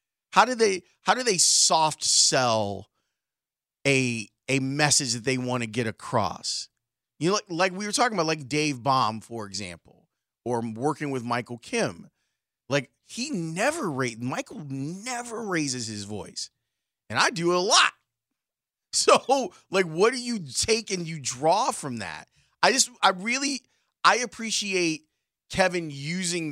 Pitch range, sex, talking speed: 130-180 Hz, male, 155 wpm